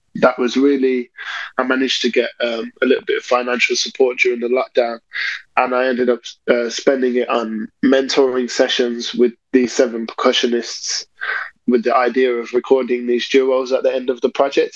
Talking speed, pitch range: 180 wpm, 120-135 Hz